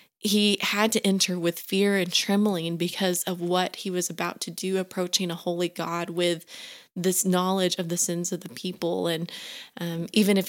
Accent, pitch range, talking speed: American, 180-205 Hz, 190 wpm